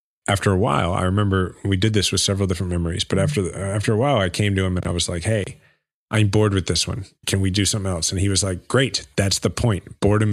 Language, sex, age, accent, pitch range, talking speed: English, male, 40-59, American, 90-110 Hz, 260 wpm